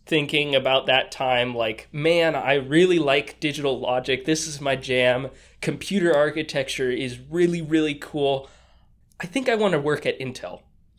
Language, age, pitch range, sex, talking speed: English, 20-39, 130-175 Hz, male, 160 wpm